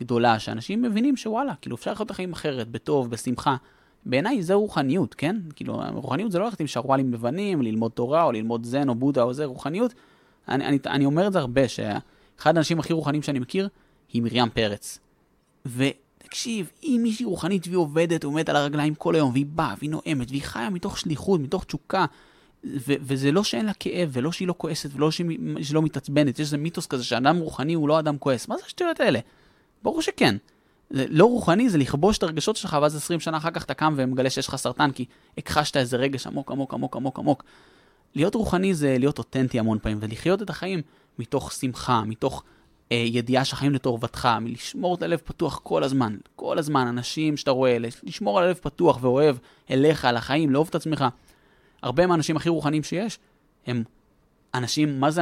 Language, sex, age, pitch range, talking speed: Hebrew, male, 20-39, 125-170 Hz, 175 wpm